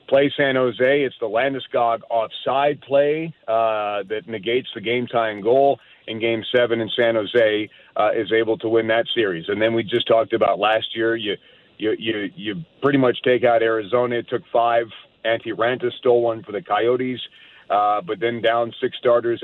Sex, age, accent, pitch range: male, 40-59, American, 115-125 Hz